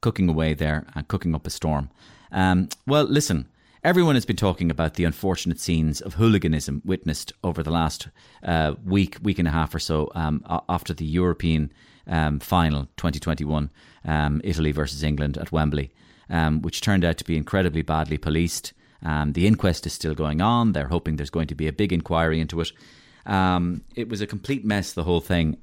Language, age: English, 30-49